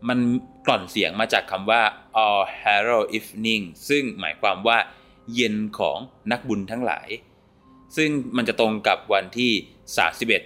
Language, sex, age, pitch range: Thai, male, 20-39, 95-125 Hz